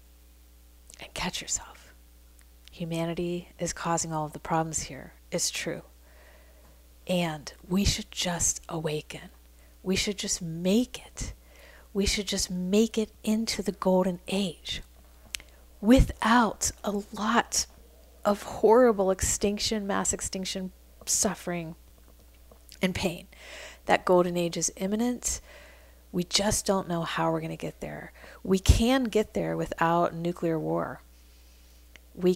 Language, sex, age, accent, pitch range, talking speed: English, female, 40-59, American, 150-190 Hz, 120 wpm